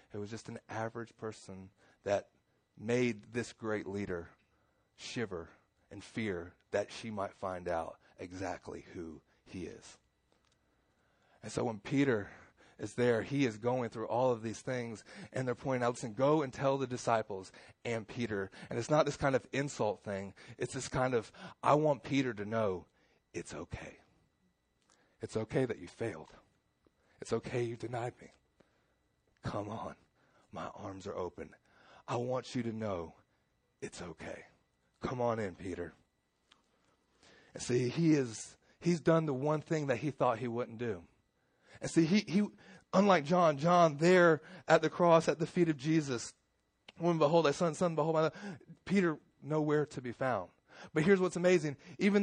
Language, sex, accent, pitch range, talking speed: English, male, American, 110-155 Hz, 165 wpm